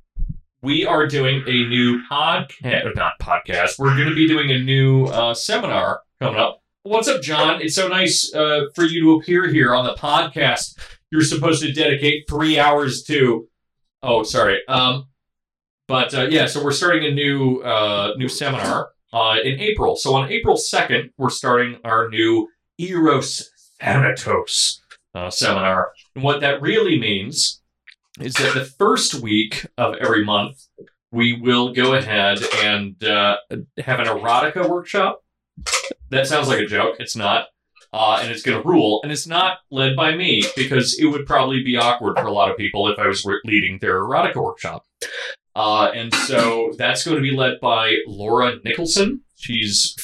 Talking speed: 170 wpm